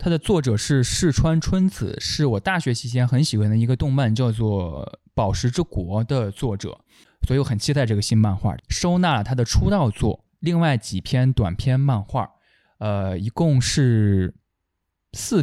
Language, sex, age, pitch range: Chinese, male, 20-39, 105-145 Hz